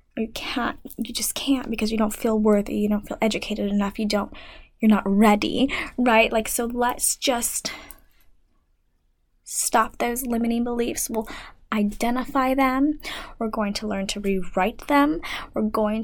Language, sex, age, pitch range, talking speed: English, female, 10-29, 215-260 Hz, 155 wpm